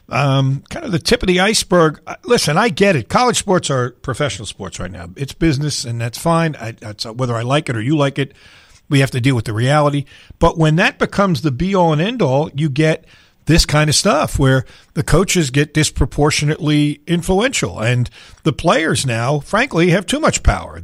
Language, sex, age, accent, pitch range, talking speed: English, male, 50-69, American, 130-180 Hz, 205 wpm